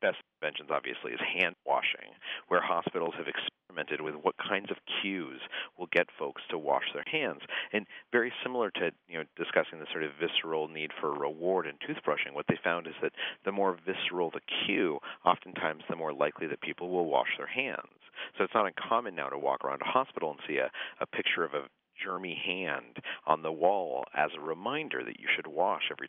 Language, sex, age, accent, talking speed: English, male, 40-59, American, 200 wpm